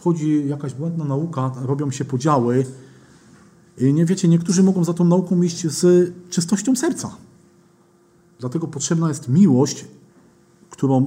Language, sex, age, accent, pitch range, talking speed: Polish, male, 40-59, native, 130-165 Hz, 130 wpm